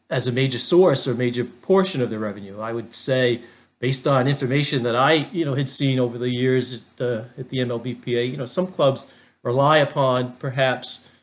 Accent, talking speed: American, 200 wpm